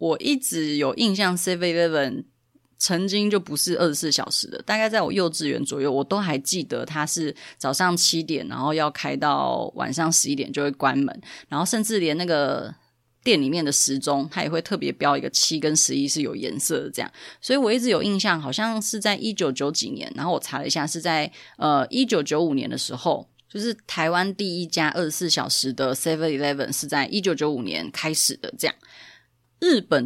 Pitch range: 140-185 Hz